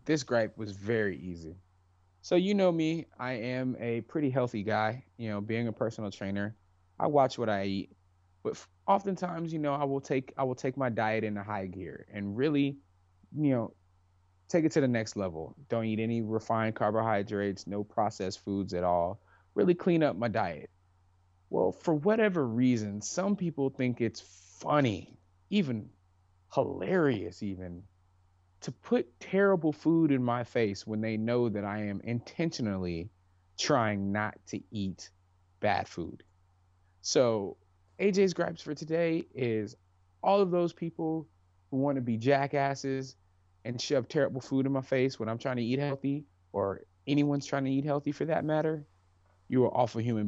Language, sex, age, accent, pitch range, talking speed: English, male, 20-39, American, 90-135 Hz, 165 wpm